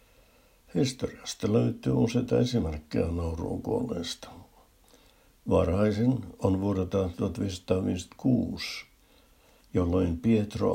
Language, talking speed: Finnish, 65 wpm